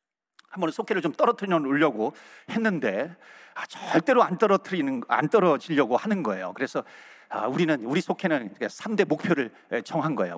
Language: Korean